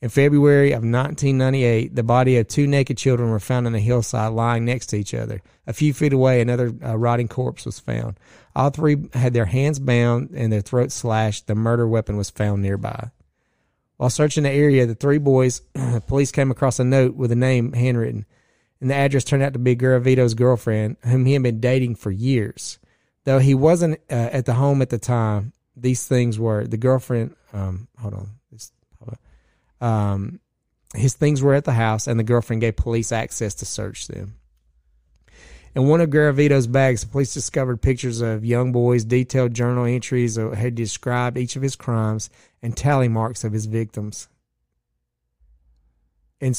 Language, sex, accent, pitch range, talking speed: English, male, American, 115-135 Hz, 180 wpm